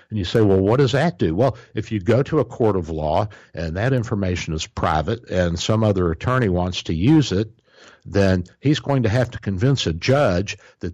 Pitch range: 85-110 Hz